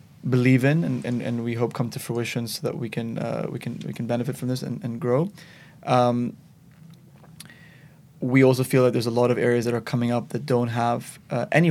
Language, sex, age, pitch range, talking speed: English, male, 20-39, 120-150 Hz, 225 wpm